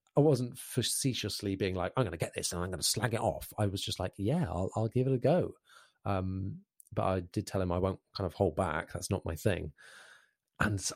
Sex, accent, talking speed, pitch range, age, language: male, British, 245 wpm, 95-120 Hz, 30-49, English